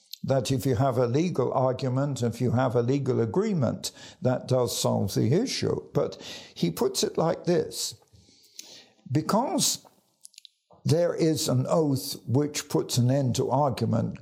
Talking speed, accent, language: 150 wpm, British, English